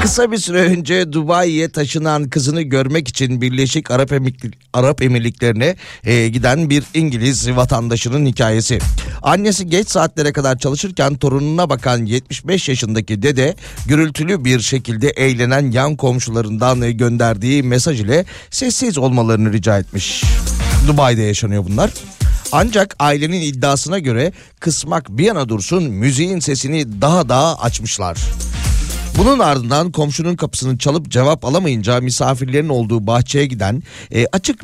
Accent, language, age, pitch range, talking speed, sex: native, Turkish, 40-59, 120-155 Hz, 125 wpm, male